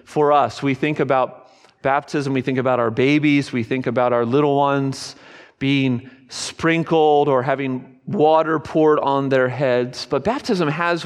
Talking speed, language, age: 155 wpm, English, 40-59